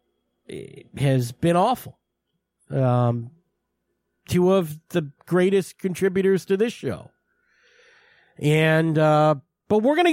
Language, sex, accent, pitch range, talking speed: English, male, American, 135-195 Hz, 115 wpm